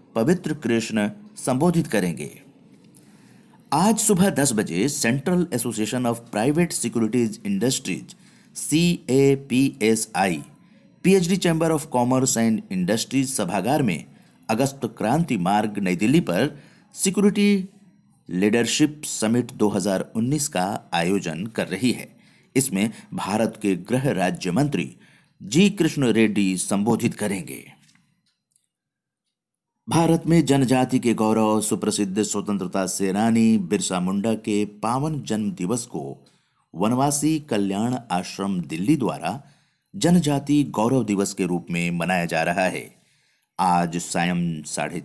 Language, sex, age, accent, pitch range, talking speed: Hindi, male, 50-69, native, 100-150 Hz, 105 wpm